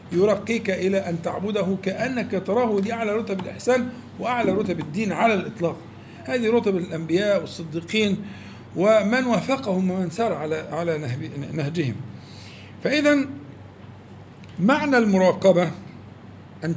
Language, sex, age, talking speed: Arabic, male, 50-69, 105 wpm